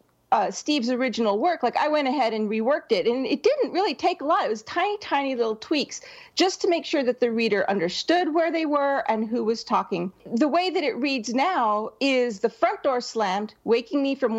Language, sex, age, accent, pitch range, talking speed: English, female, 40-59, American, 225-310 Hz, 220 wpm